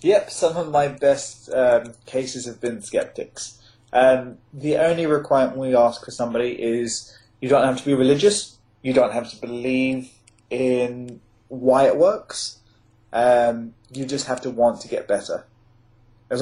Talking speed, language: 160 wpm, English